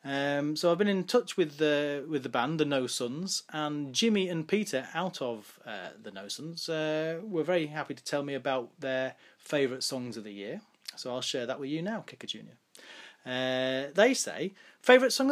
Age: 30-49